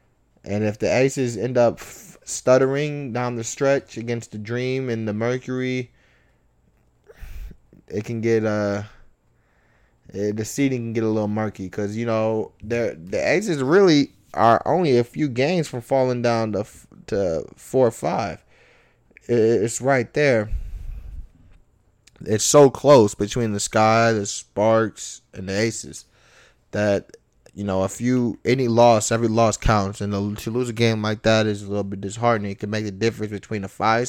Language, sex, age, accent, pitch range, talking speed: English, male, 20-39, American, 105-120 Hz, 155 wpm